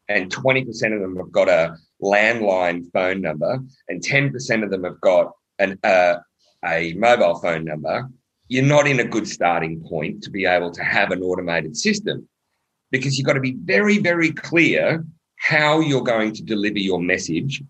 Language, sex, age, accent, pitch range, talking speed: English, male, 40-59, Australian, 100-145 Hz, 175 wpm